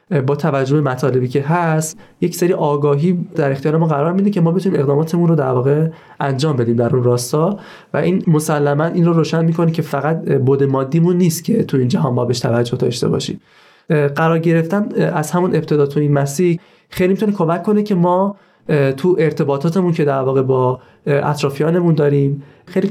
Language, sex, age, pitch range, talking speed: Persian, male, 30-49, 140-175 Hz, 180 wpm